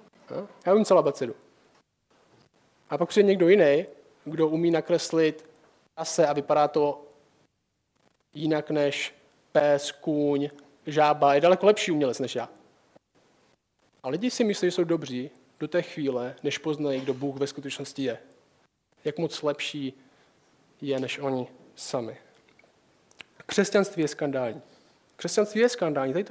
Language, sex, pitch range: Czech, male, 150-200 Hz